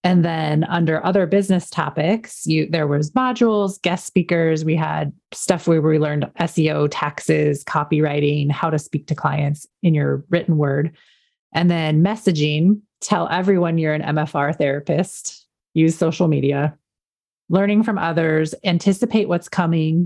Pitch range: 155-195 Hz